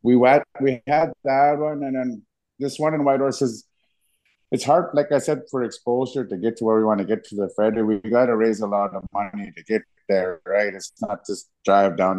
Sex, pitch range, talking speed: male, 95-115 Hz, 235 wpm